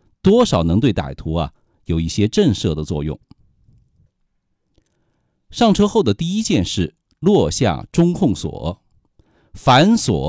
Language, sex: Chinese, male